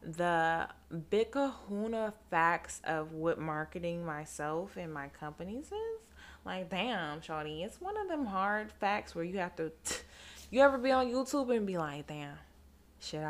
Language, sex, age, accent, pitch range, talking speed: English, female, 20-39, American, 150-220 Hz, 160 wpm